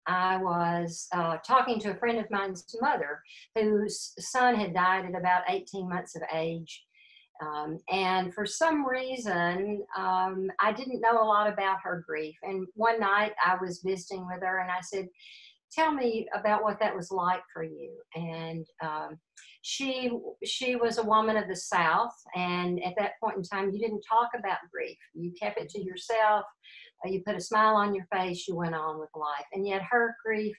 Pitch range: 175-225 Hz